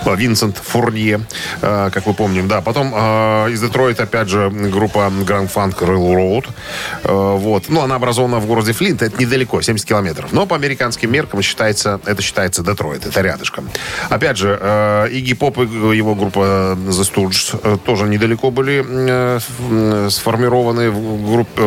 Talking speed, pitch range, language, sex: 145 wpm, 100-120 Hz, Russian, male